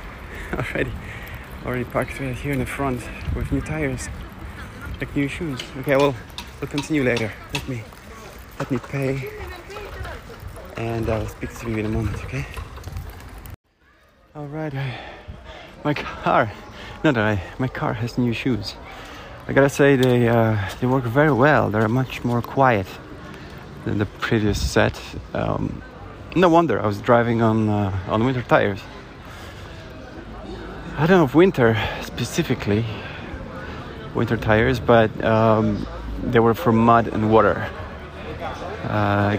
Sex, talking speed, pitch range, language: male, 140 wpm, 100-130 Hz, English